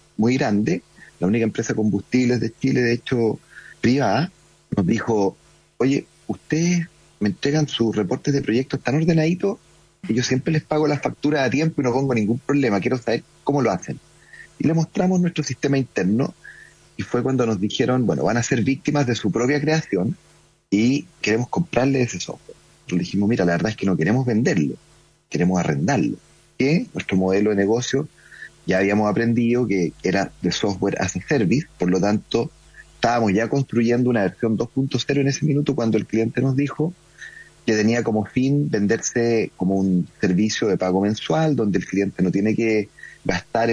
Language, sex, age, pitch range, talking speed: Spanish, male, 40-59, 105-145 Hz, 180 wpm